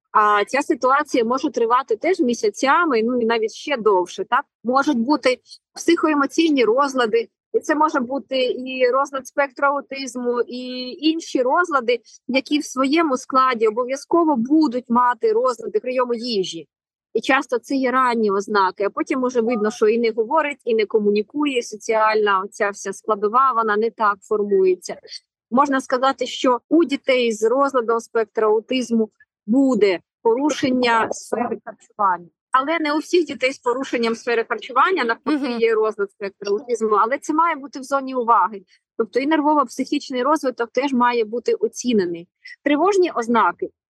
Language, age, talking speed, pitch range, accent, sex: Ukrainian, 30-49, 145 wpm, 225-295 Hz, native, female